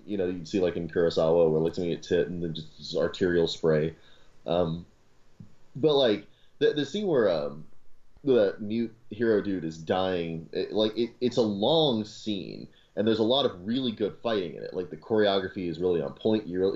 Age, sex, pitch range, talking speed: 30-49, male, 85-110 Hz, 205 wpm